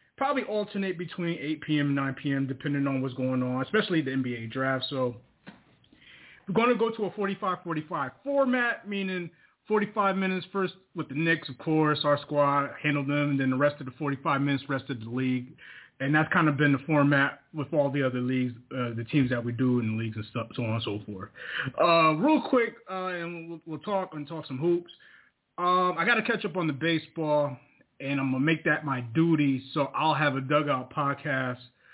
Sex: male